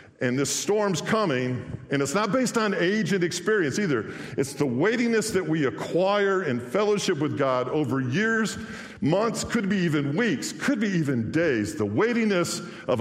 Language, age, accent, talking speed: English, 50-69, American, 170 wpm